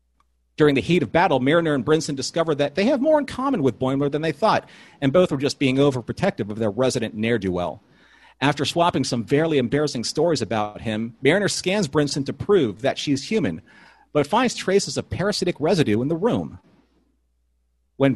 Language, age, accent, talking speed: English, 40-59, American, 190 wpm